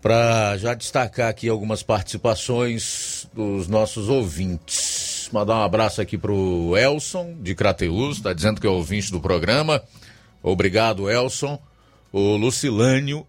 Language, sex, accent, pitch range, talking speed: Portuguese, male, Brazilian, 100-120 Hz, 130 wpm